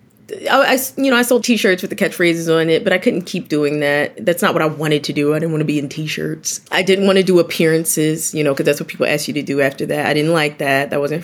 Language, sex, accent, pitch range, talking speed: English, female, American, 150-195 Hz, 295 wpm